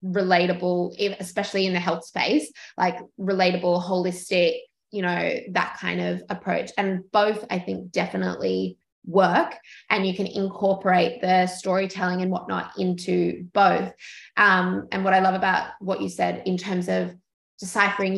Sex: female